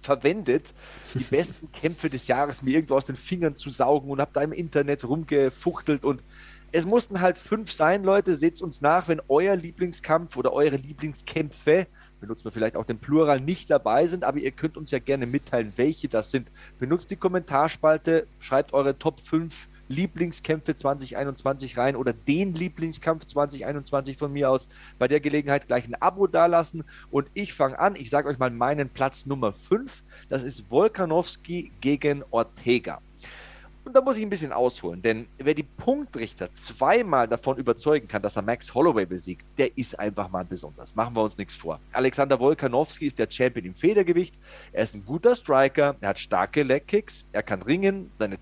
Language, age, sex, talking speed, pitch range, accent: German, 30-49, male, 175 wpm, 130-170 Hz, German